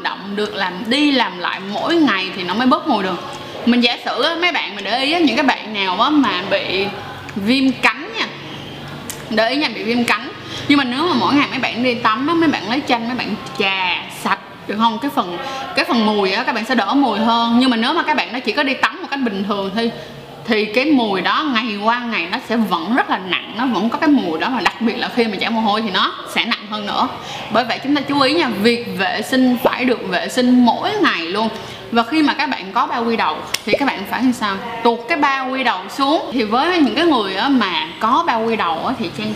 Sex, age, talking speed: female, 20-39, 265 wpm